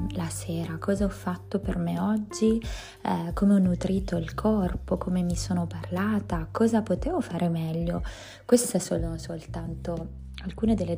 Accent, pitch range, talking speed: native, 160-190 Hz, 150 wpm